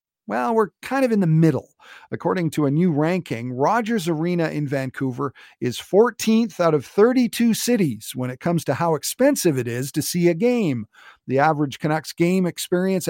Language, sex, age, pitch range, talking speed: English, male, 50-69, 130-185 Hz, 180 wpm